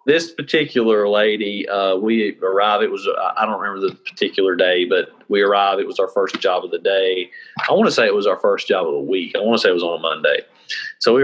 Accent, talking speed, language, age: American, 255 wpm, English, 40-59